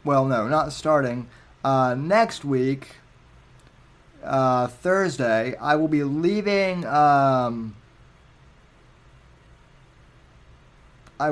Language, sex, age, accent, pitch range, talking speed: English, male, 20-39, American, 125-150 Hz, 80 wpm